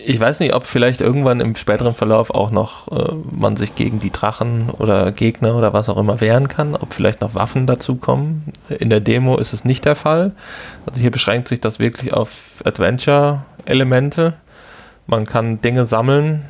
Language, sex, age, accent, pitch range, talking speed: German, male, 20-39, German, 105-130 Hz, 185 wpm